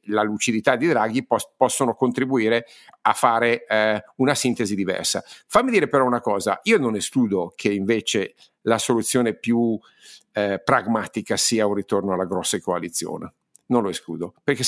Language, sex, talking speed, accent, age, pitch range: Italian, male, 150 wpm, native, 50-69, 110-150 Hz